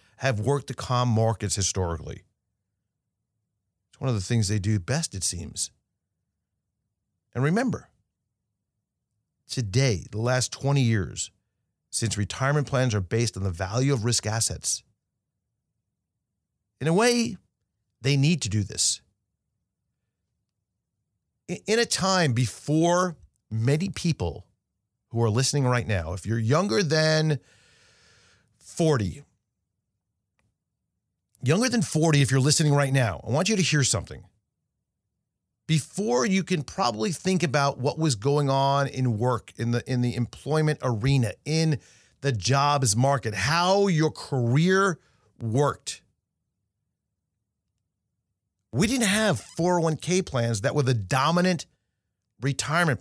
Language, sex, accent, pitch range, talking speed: English, male, American, 105-155 Hz, 120 wpm